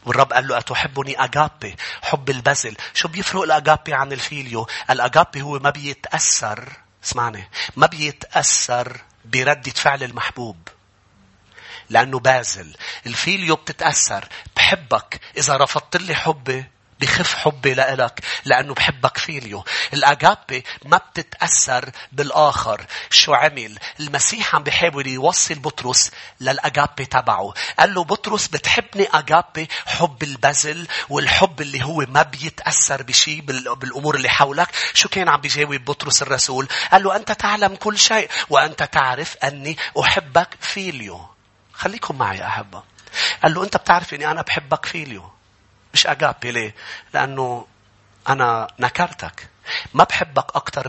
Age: 40-59